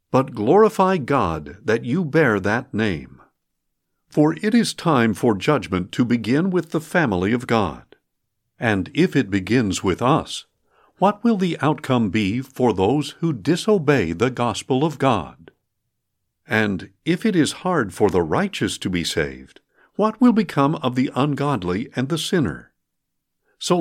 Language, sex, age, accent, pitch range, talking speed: English, male, 60-79, American, 105-165 Hz, 155 wpm